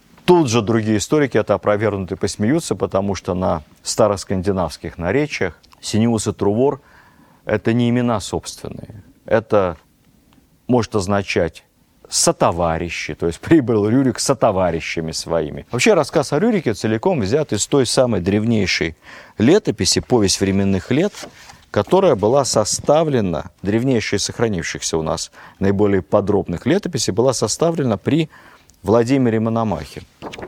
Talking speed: 115 wpm